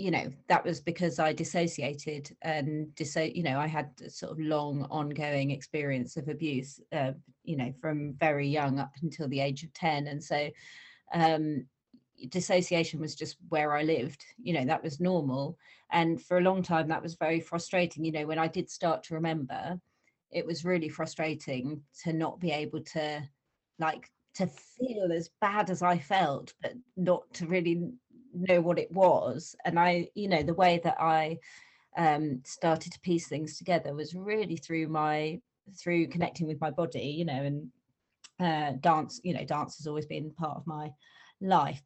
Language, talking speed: English, 180 wpm